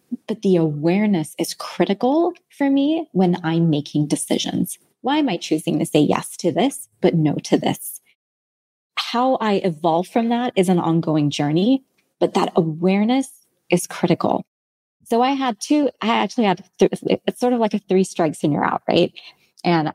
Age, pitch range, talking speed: 20-39, 165-215 Hz, 170 wpm